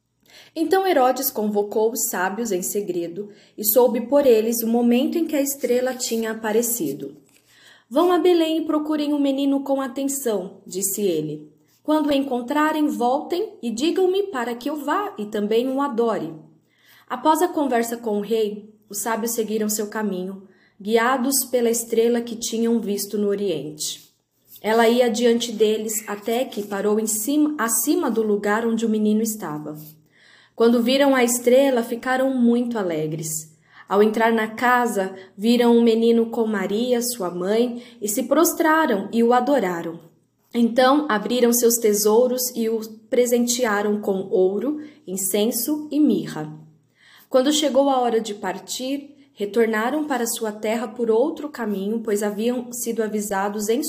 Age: 20-39